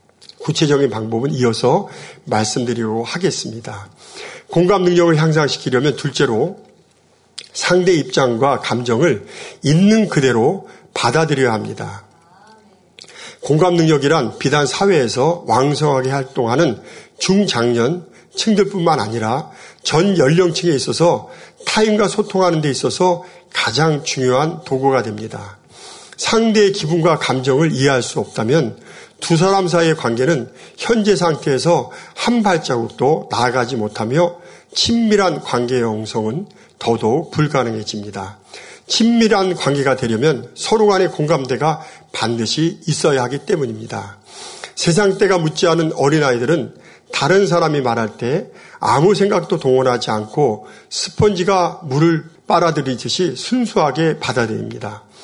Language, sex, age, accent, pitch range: Korean, male, 50-69, native, 125-180 Hz